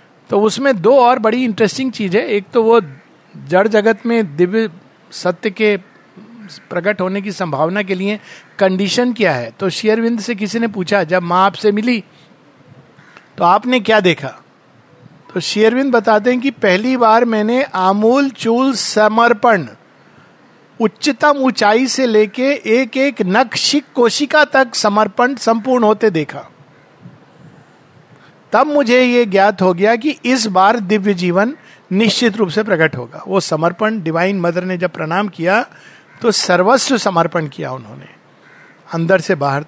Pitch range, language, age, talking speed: 180-230 Hz, Hindi, 50-69, 145 wpm